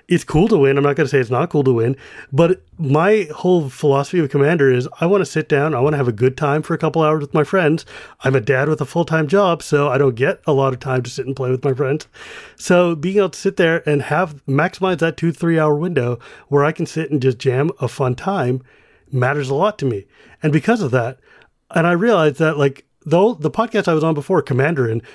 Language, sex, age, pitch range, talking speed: English, male, 30-49, 135-175 Hz, 255 wpm